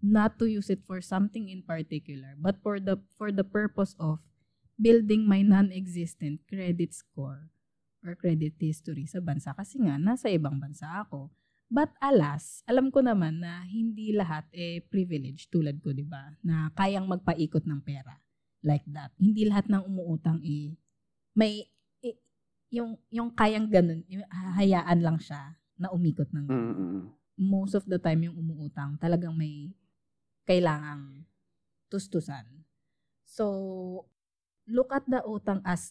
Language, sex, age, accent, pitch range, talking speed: Filipino, female, 20-39, native, 155-215 Hz, 145 wpm